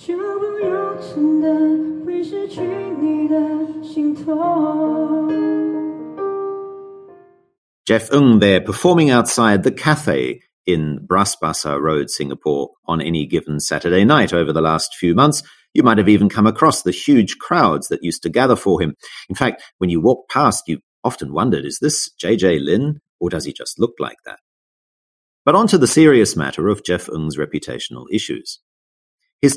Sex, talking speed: male, 140 wpm